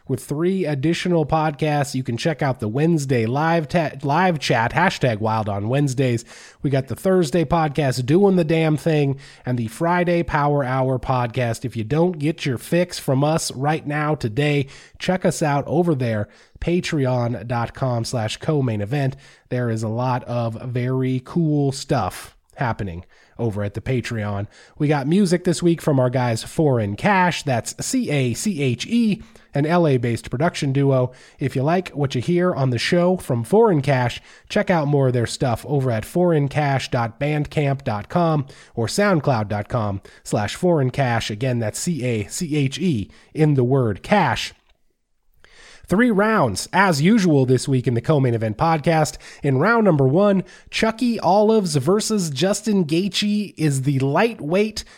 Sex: male